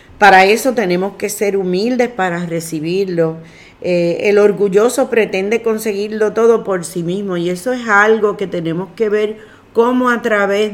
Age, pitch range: 40-59, 185-225 Hz